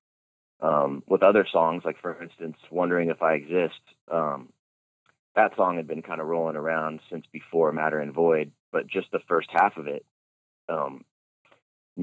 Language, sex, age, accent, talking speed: English, male, 30-49, American, 165 wpm